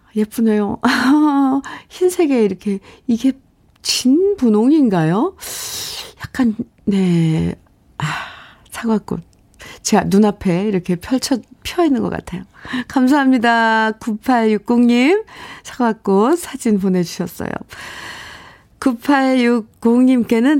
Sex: female